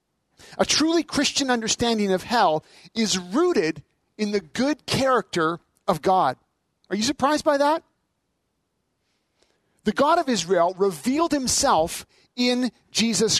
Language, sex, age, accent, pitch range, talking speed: English, male, 40-59, American, 195-265 Hz, 120 wpm